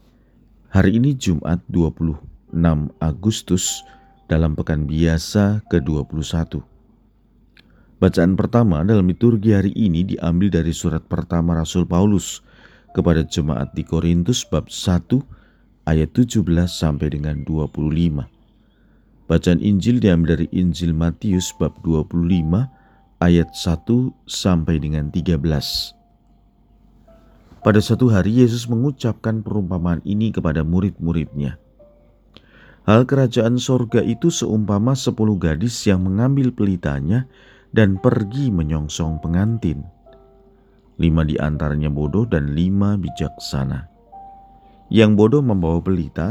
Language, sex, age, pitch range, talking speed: Indonesian, male, 40-59, 80-110 Hz, 100 wpm